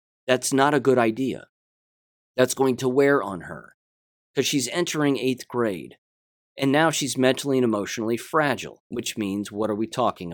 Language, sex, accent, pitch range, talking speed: English, male, American, 115-145 Hz, 170 wpm